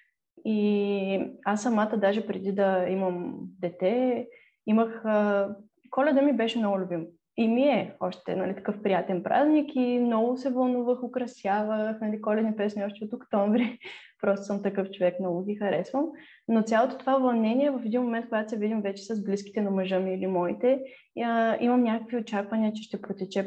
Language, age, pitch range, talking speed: Bulgarian, 20-39, 195-230 Hz, 165 wpm